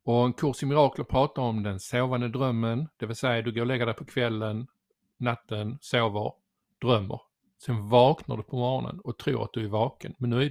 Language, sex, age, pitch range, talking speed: Swedish, male, 50-69, 115-135 Hz, 210 wpm